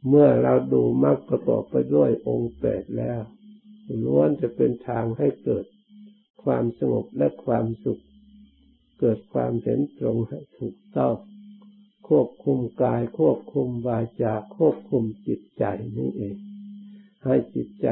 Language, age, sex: Thai, 60-79, male